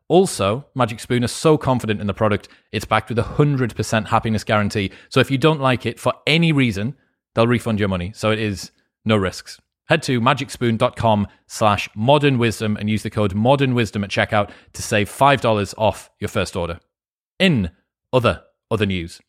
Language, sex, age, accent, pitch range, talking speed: English, male, 30-49, British, 105-130 Hz, 175 wpm